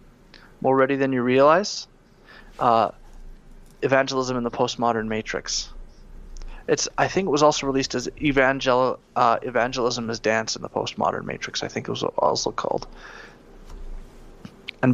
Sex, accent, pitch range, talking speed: male, American, 110-130 Hz, 140 wpm